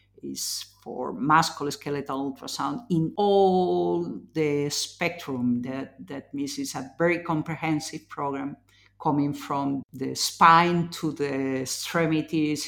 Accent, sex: Spanish, female